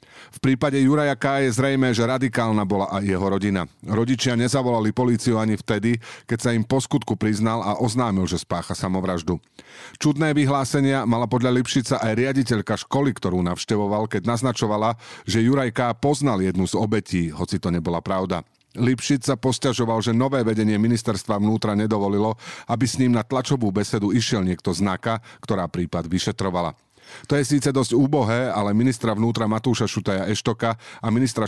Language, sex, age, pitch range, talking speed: Slovak, male, 40-59, 100-130 Hz, 160 wpm